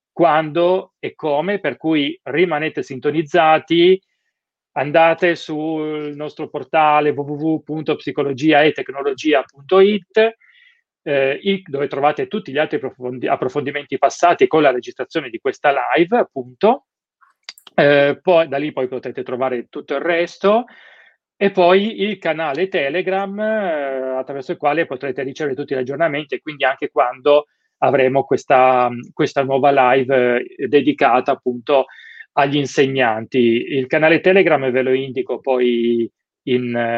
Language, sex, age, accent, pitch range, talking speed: Italian, male, 30-49, native, 135-180 Hz, 115 wpm